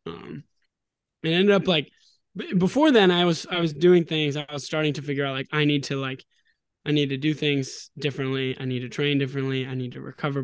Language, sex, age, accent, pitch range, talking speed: English, male, 20-39, American, 135-155 Hz, 225 wpm